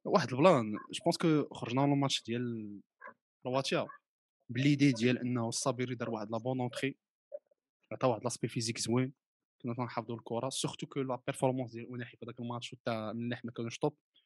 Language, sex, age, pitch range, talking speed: Arabic, male, 20-39, 120-145 Hz, 165 wpm